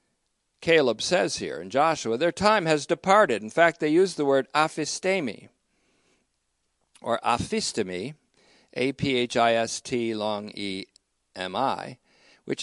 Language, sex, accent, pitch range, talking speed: English, male, American, 125-170 Hz, 105 wpm